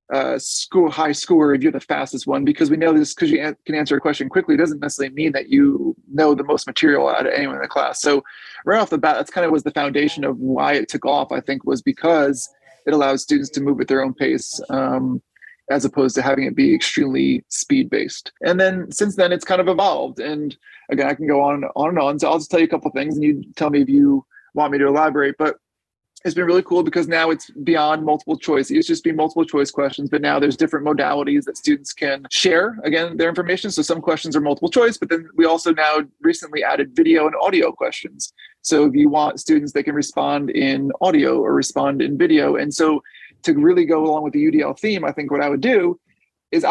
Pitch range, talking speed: 145-195 Hz, 245 wpm